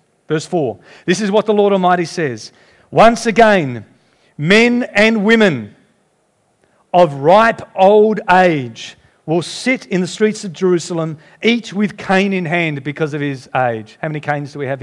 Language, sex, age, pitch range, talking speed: English, male, 40-59, 140-195 Hz, 160 wpm